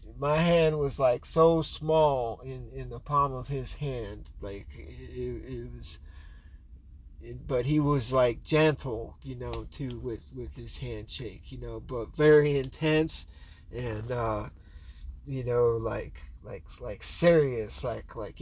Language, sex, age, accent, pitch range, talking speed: English, male, 30-49, American, 105-135 Hz, 145 wpm